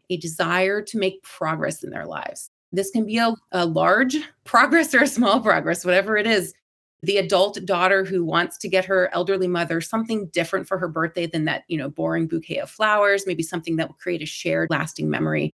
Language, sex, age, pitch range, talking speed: English, female, 30-49, 170-210 Hz, 210 wpm